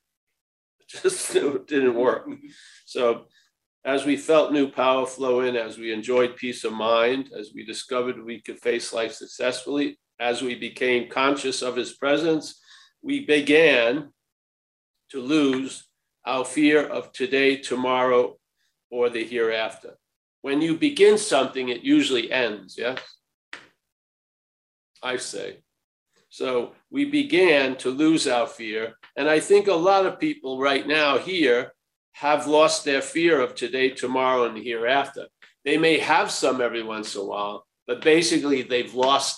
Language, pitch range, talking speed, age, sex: English, 120-155 Hz, 140 wpm, 50-69, male